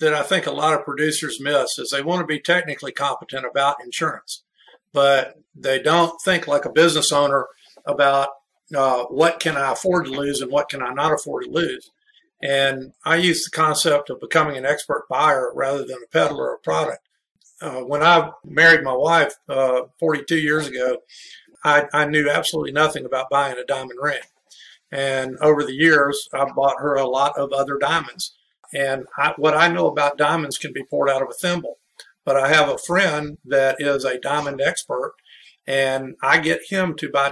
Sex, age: male, 50-69